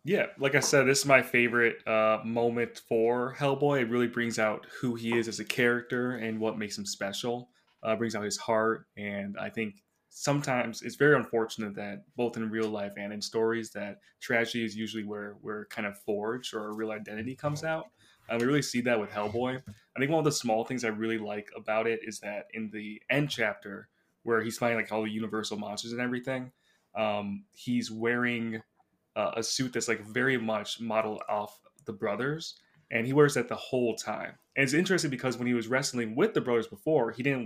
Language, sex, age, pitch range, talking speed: English, male, 20-39, 110-125 Hz, 210 wpm